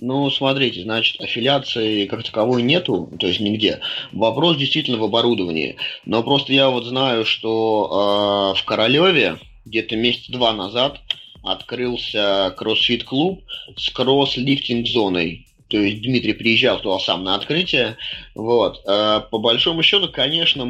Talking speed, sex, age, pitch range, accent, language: 135 wpm, male, 30-49, 110-135 Hz, native, Russian